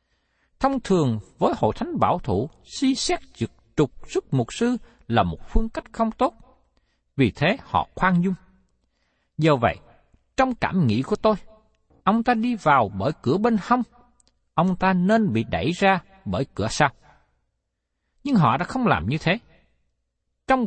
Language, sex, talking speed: Vietnamese, male, 170 wpm